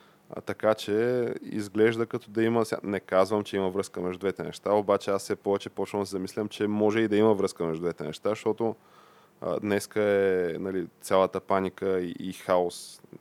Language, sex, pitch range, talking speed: Bulgarian, male, 95-105 Hz, 180 wpm